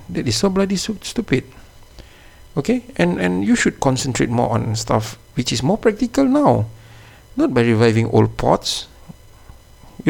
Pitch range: 110-135 Hz